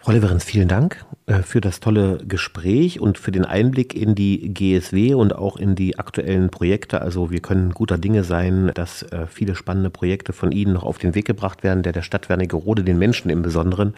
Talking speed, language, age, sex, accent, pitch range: 195 wpm, German, 30-49, male, German, 90-110 Hz